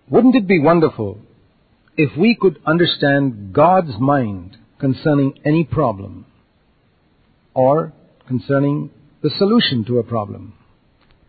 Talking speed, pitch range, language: 105 wpm, 115-165 Hz, English